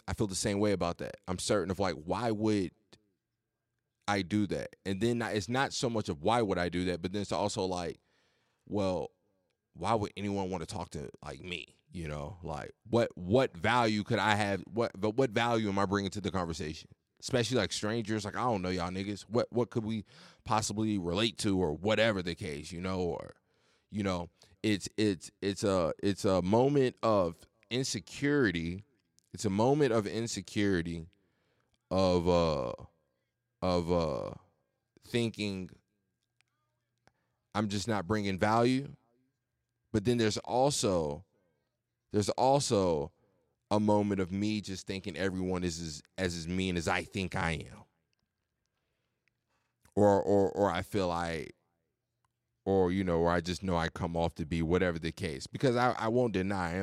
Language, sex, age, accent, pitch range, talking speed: English, male, 30-49, American, 90-115 Hz, 170 wpm